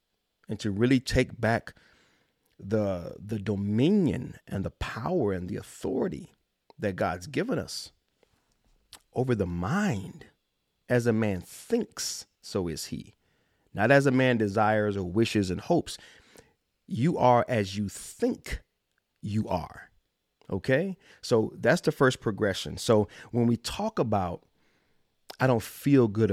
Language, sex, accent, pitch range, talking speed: English, male, American, 100-125 Hz, 135 wpm